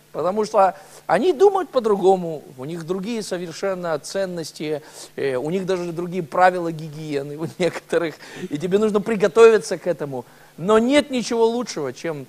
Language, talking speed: Russian, 140 wpm